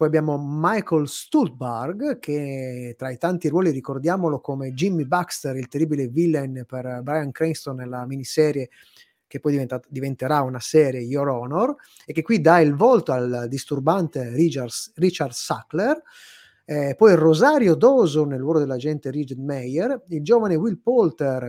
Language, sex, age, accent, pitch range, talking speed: Italian, male, 30-49, native, 135-175 Hz, 150 wpm